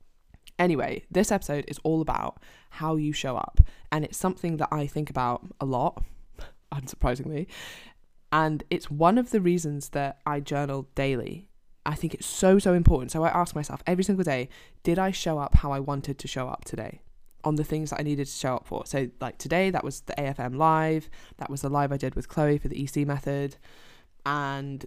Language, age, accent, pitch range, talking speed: English, 10-29, British, 140-165 Hz, 205 wpm